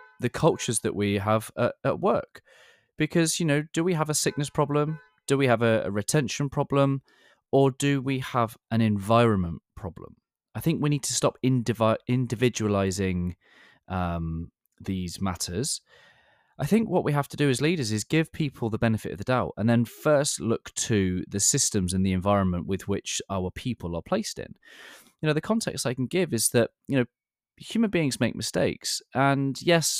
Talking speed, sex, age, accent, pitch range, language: 180 wpm, male, 20-39, British, 105-145 Hz, English